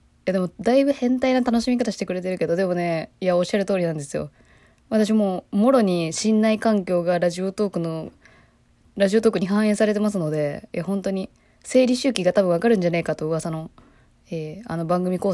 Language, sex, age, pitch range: Japanese, female, 20-39, 170-215 Hz